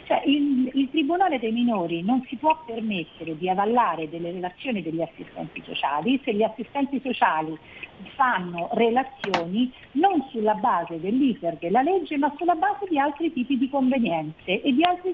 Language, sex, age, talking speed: Italian, female, 50-69, 155 wpm